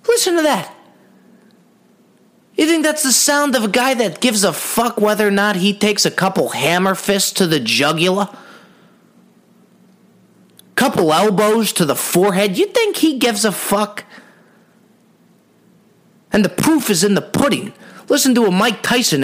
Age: 30-49